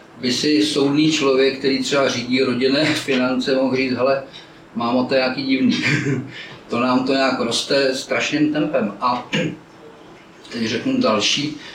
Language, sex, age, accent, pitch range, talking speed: Czech, male, 40-59, native, 130-170 Hz, 145 wpm